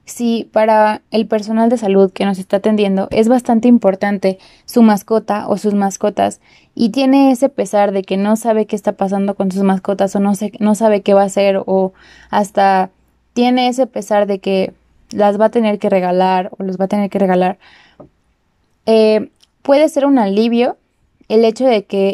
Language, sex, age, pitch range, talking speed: Spanish, female, 20-39, 195-225 Hz, 190 wpm